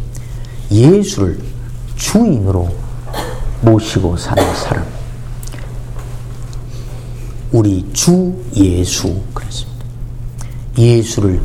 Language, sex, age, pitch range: Korean, male, 50-69, 120-150 Hz